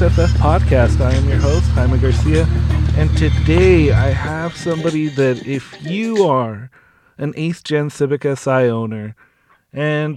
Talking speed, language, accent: 140 wpm, English, American